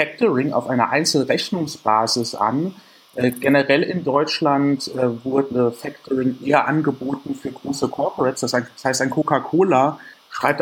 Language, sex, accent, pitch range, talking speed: German, male, German, 125-145 Hz, 115 wpm